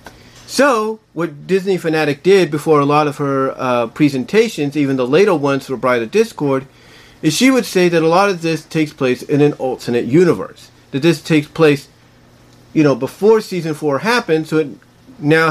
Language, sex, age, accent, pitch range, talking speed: English, male, 40-59, American, 135-175 Hz, 180 wpm